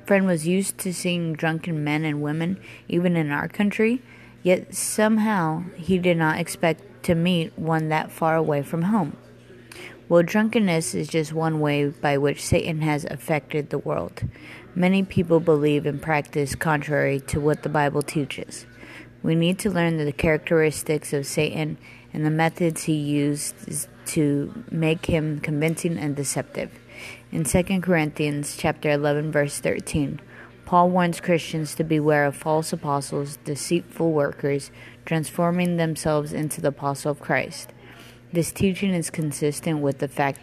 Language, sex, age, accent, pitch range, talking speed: English, female, 20-39, American, 145-170 Hz, 150 wpm